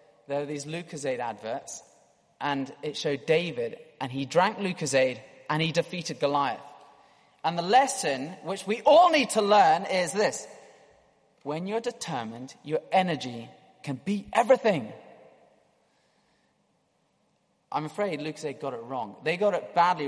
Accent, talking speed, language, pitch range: British, 135 wpm, English, 145-210 Hz